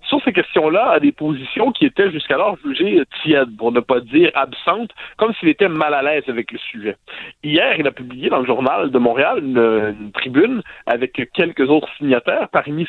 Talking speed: 195 wpm